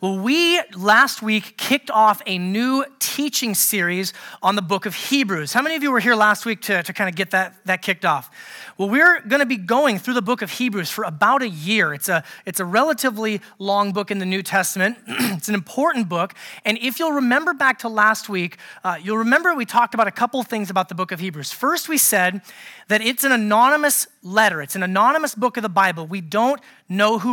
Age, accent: 30-49, American